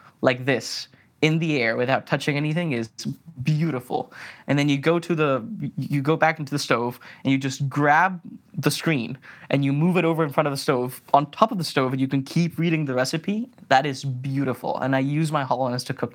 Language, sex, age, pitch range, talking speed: English, male, 20-39, 125-155 Hz, 225 wpm